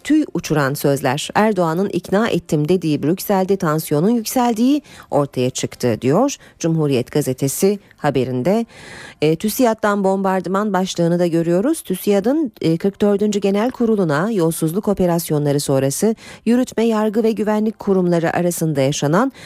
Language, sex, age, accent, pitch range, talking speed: Turkish, female, 40-59, native, 155-220 Hz, 110 wpm